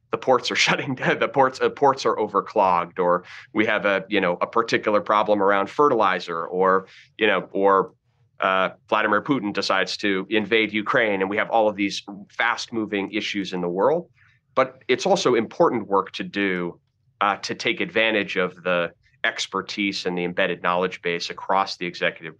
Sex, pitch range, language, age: male, 90-115 Hz, English, 30-49